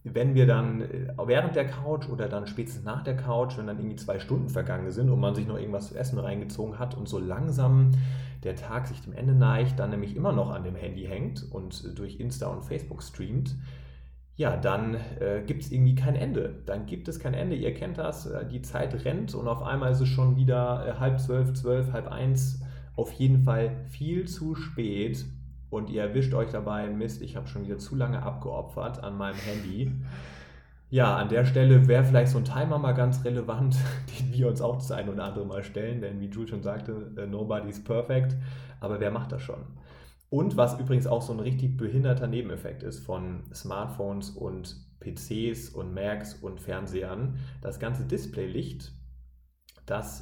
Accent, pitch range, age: German, 105-130 Hz, 30-49